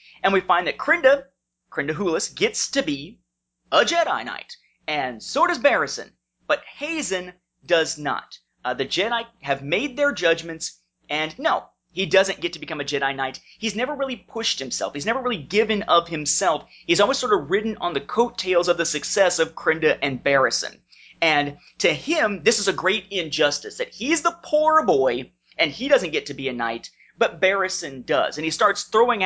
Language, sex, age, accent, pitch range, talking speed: English, male, 30-49, American, 140-200 Hz, 190 wpm